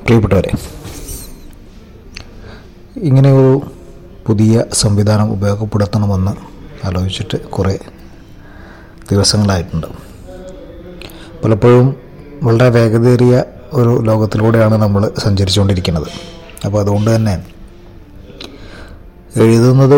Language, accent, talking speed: Malayalam, native, 55 wpm